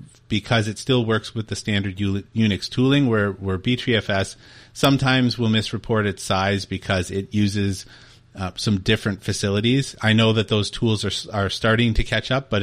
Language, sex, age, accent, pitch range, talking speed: English, male, 30-49, American, 100-120 Hz, 170 wpm